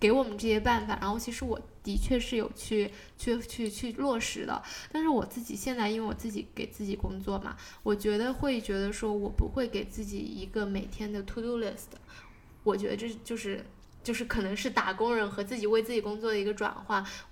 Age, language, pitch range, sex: 10-29, Chinese, 200-225 Hz, female